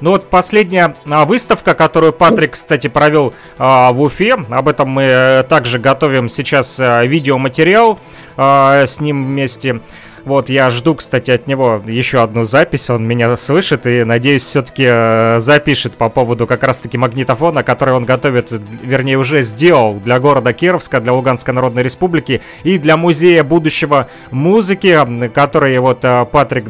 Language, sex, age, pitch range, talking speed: Russian, male, 30-49, 125-160 Hz, 140 wpm